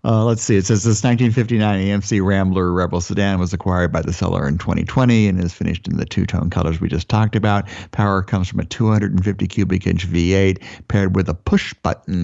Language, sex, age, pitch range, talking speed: English, male, 50-69, 90-110 Hz, 210 wpm